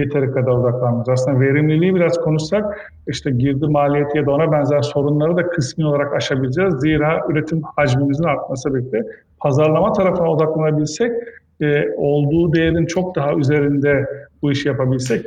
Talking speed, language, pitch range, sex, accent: 135 wpm, Turkish, 135-160 Hz, male, native